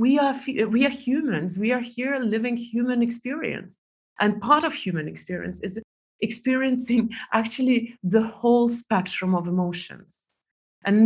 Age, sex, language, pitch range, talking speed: 30-49, female, English, 170-225 Hz, 130 wpm